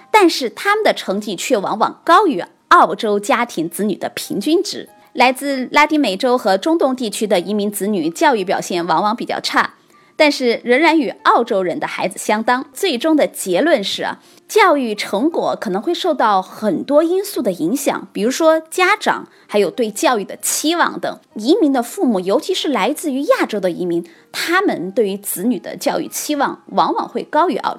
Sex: female